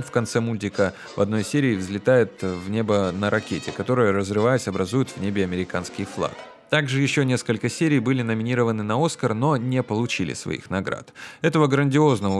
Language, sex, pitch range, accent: Russian, male, 100-130 Hz, native